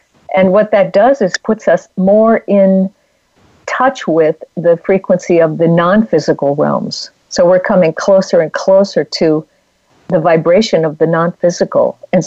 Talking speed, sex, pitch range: 145 wpm, female, 165-200 Hz